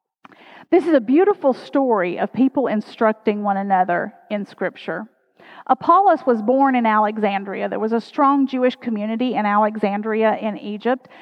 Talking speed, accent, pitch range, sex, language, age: 145 wpm, American, 230-305 Hz, female, English, 40-59